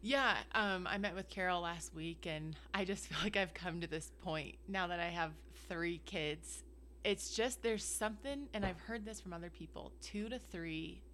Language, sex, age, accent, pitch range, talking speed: English, female, 20-39, American, 165-195 Hz, 205 wpm